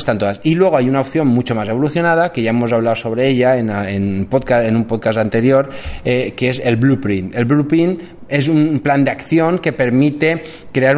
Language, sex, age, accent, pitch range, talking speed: Spanish, male, 20-39, Spanish, 120-160 Hz, 210 wpm